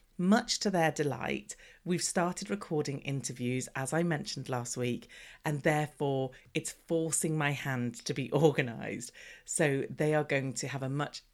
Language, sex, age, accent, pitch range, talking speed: English, female, 40-59, British, 145-200 Hz, 160 wpm